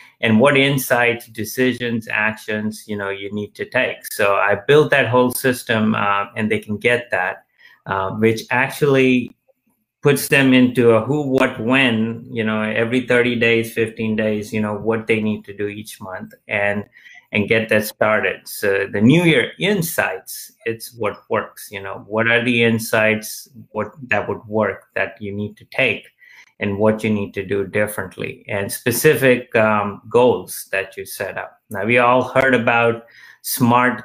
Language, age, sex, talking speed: English, 30-49, male, 175 wpm